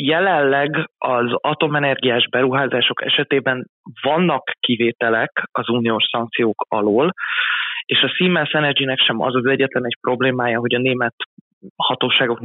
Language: Hungarian